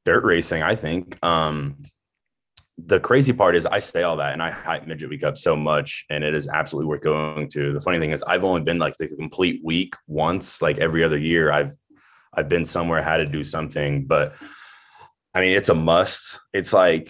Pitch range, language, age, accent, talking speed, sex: 75-85 Hz, English, 20-39, American, 210 wpm, male